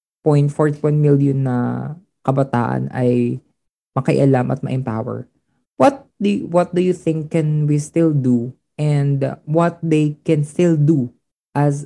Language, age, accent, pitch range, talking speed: Filipino, 20-39, native, 125-165 Hz, 130 wpm